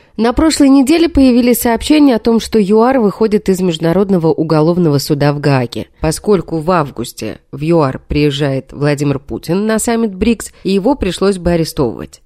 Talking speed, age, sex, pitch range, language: 155 wpm, 30-49, female, 160-235 Hz, Russian